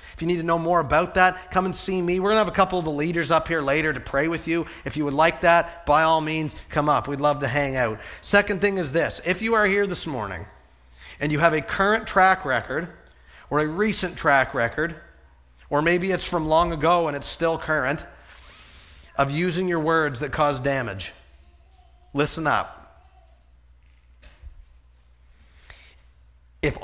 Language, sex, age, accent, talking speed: English, male, 40-59, American, 190 wpm